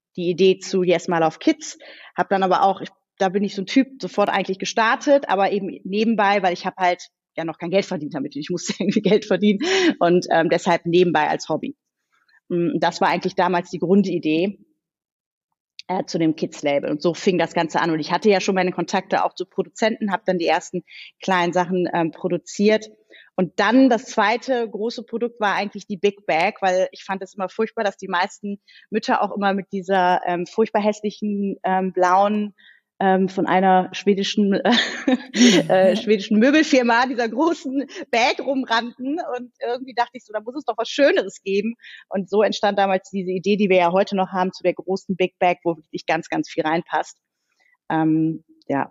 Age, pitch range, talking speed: 30-49, 180-220 Hz, 195 wpm